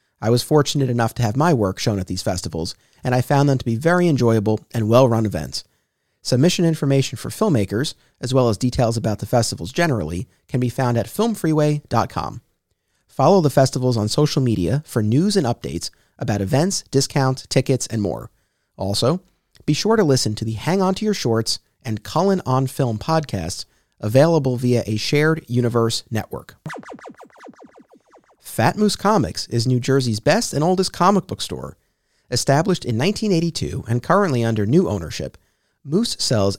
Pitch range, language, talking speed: 110-155 Hz, English, 165 wpm